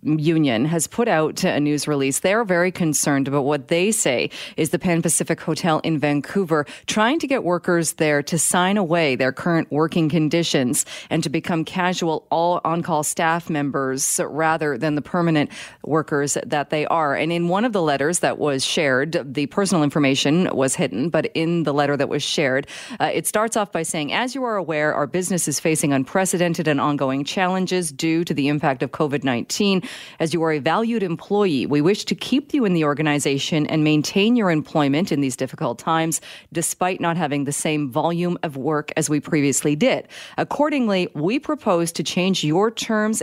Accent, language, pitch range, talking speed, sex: American, English, 145-180 Hz, 185 wpm, female